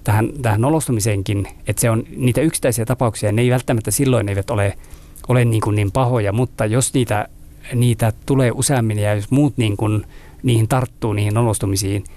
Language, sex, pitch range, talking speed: Finnish, male, 100-120 Hz, 170 wpm